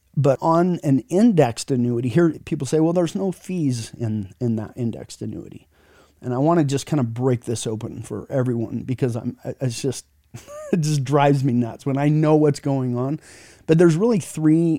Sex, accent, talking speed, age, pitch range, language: male, American, 195 wpm, 30-49, 115-145 Hz, English